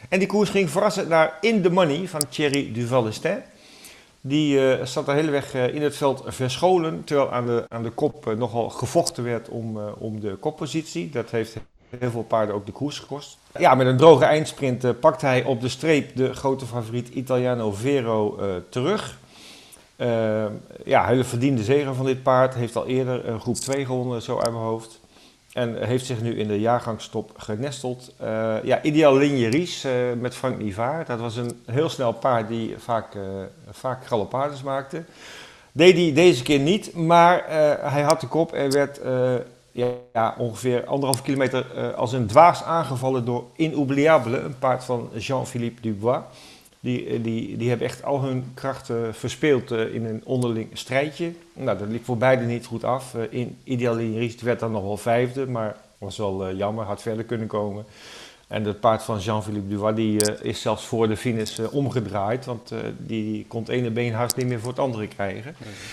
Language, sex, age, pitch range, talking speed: Dutch, male, 50-69, 115-140 Hz, 190 wpm